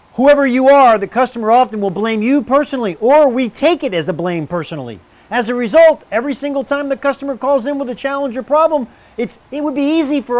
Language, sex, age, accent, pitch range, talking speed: English, male, 40-59, American, 190-275 Hz, 225 wpm